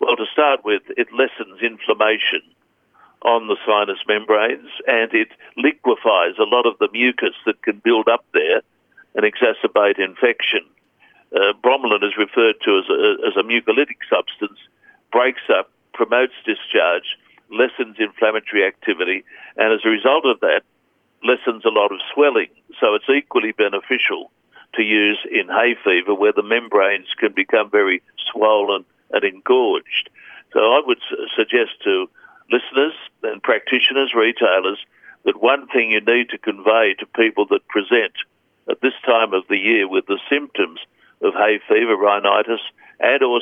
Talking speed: 150 wpm